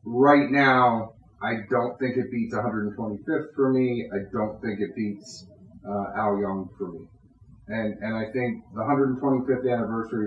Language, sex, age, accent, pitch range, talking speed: English, male, 30-49, American, 105-130 Hz, 160 wpm